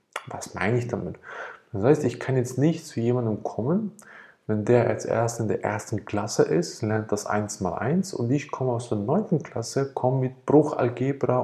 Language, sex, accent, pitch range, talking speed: German, male, German, 110-145 Hz, 185 wpm